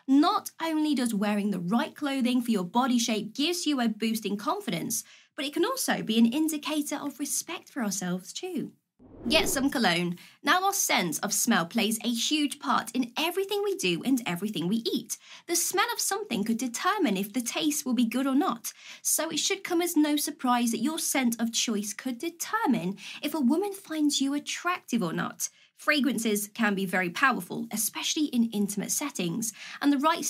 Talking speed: 190 wpm